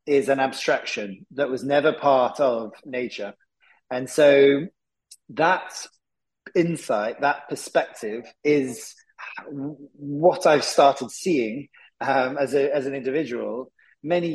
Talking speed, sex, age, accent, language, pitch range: 115 wpm, male, 30-49, British, English, 130-155 Hz